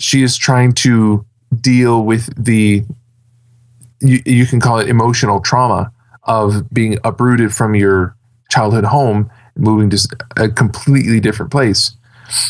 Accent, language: American, English